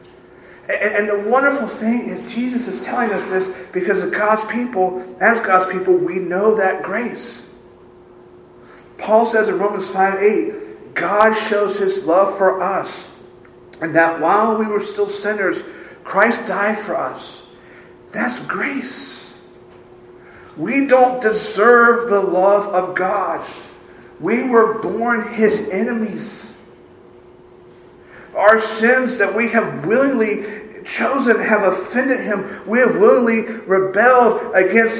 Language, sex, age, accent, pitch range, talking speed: English, male, 50-69, American, 185-225 Hz, 125 wpm